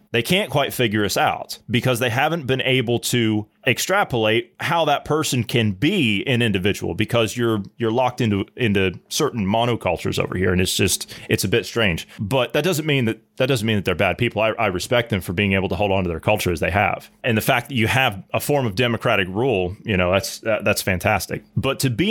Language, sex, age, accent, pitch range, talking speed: English, male, 30-49, American, 100-135 Hz, 230 wpm